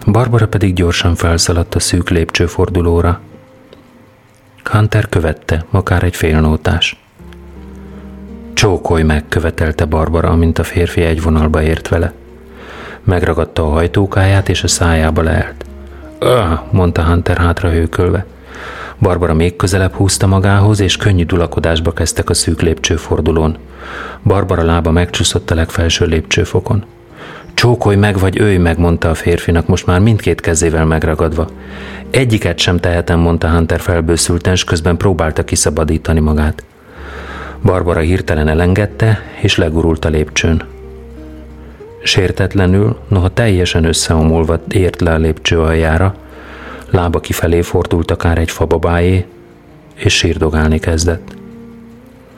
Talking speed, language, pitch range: 120 wpm, Hungarian, 80-95 Hz